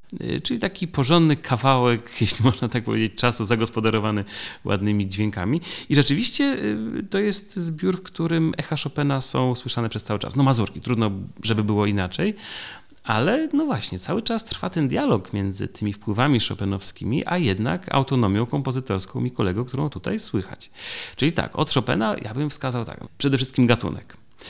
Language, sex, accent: Polish, male, native